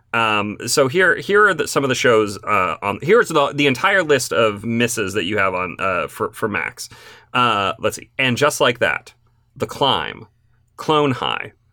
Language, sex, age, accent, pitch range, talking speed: English, male, 30-49, American, 115-150 Hz, 185 wpm